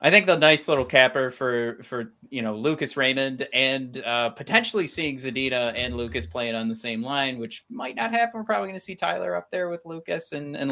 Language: English